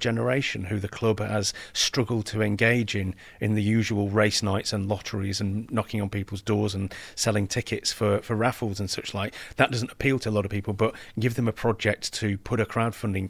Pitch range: 105-120 Hz